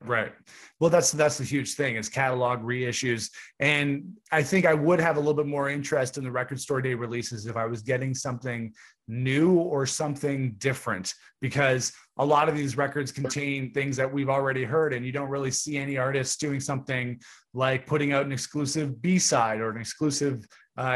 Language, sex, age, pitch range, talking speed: English, male, 30-49, 125-150 Hz, 190 wpm